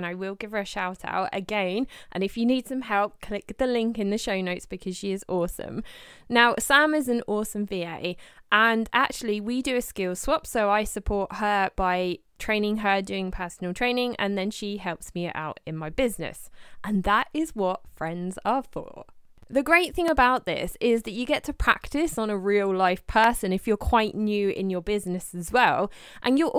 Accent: British